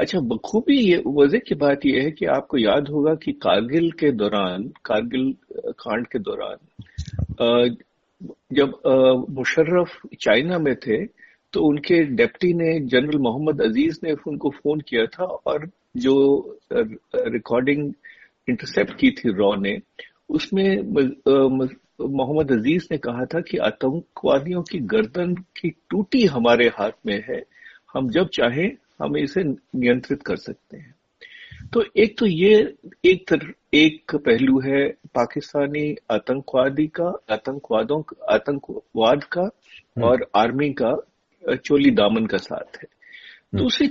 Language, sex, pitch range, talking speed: Hindi, male, 130-205 Hz, 125 wpm